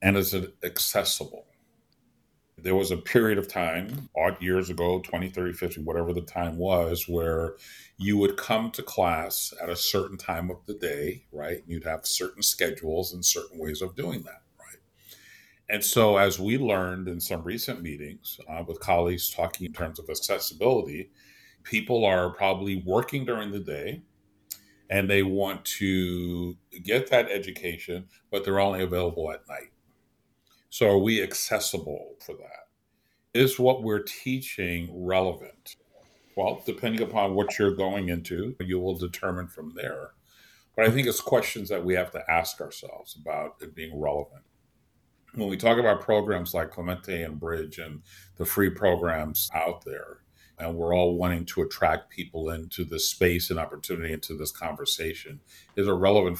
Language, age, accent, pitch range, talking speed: English, 50-69, American, 85-100 Hz, 165 wpm